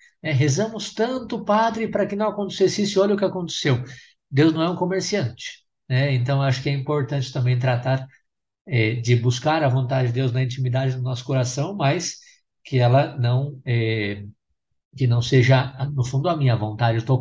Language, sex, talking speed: Portuguese, male, 180 wpm